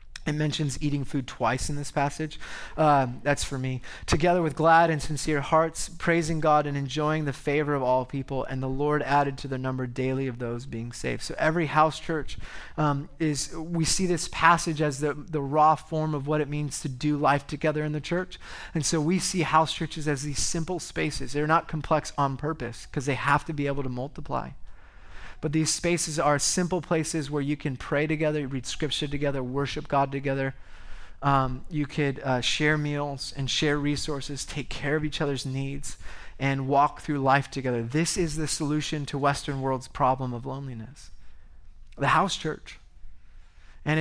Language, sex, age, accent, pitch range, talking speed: English, male, 30-49, American, 135-160 Hz, 190 wpm